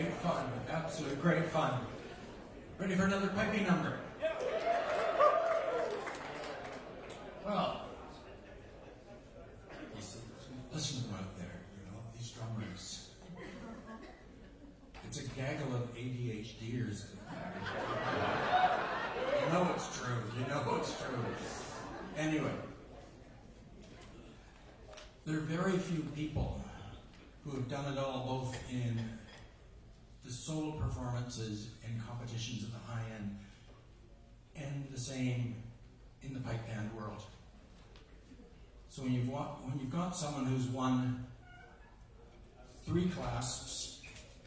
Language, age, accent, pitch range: English, 50-69, American, 115-135 Hz